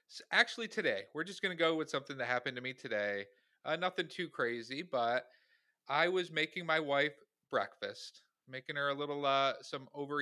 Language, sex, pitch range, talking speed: English, male, 140-195 Hz, 195 wpm